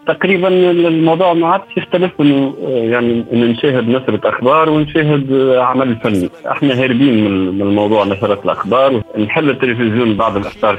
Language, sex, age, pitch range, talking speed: Arabic, male, 40-59, 110-140 Hz, 120 wpm